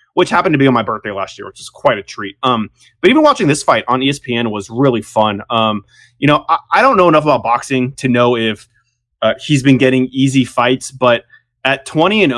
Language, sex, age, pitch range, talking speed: English, male, 20-39, 115-140 Hz, 235 wpm